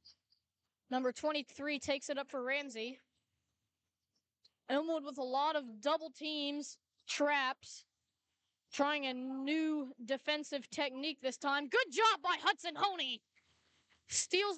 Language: English